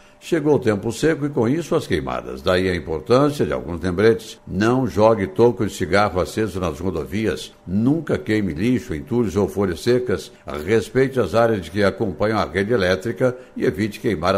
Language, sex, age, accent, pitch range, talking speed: Portuguese, male, 60-79, Brazilian, 95-115 Hz, 170 wpm